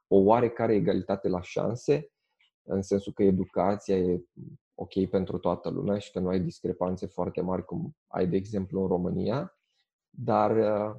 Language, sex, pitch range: Romanian, male, 95-120 Hz